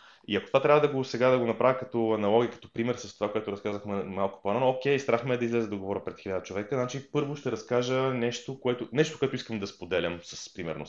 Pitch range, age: 115-150 Hz, 20-39